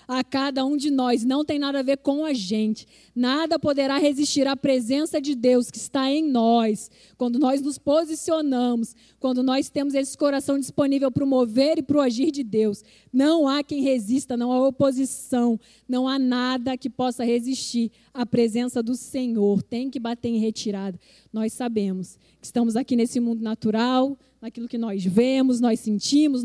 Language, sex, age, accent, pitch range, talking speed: Portuguese, female, 20-39, Brazilian, 235-275 Hz, 180 wpm